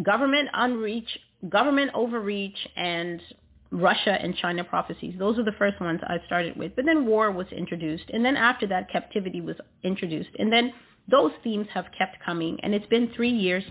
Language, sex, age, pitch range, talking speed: English, female, 40-59, 185-240 Hz, 180 wpm